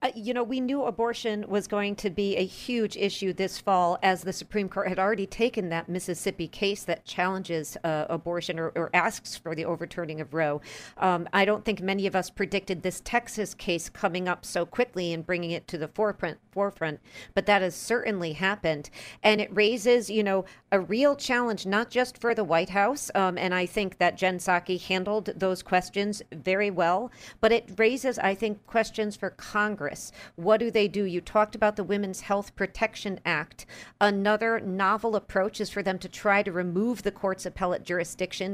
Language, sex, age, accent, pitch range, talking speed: English, female, 50-69, American, 180-215 Hz, 190 wpm